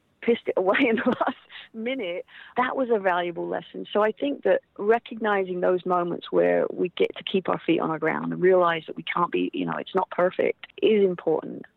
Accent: British